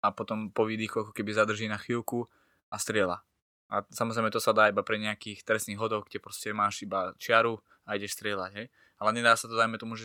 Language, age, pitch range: Slovak, 20-39, 110-120 Hz